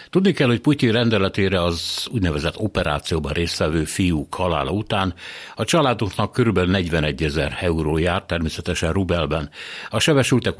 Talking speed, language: 130 wpm, Hungarian